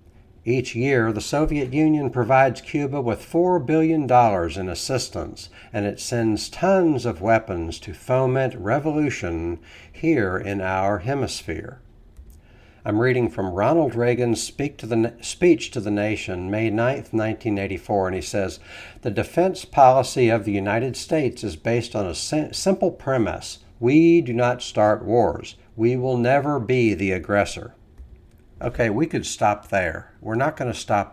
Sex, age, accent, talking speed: male, 60-79, American, 150 wpm